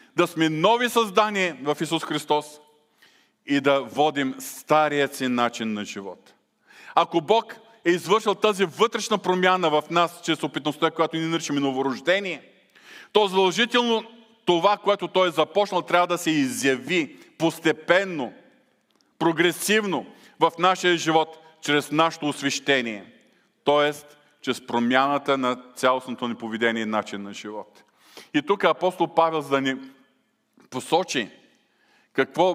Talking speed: 125 wpm